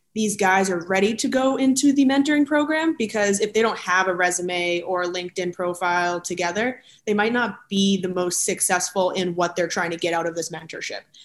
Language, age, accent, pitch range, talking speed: English, 20-39, American, 180-210 Hz, 210 wpm